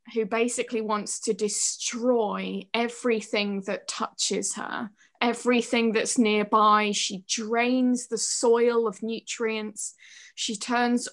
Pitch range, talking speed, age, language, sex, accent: 215-255 Hz, 110 wpm, 20-39, English, female, British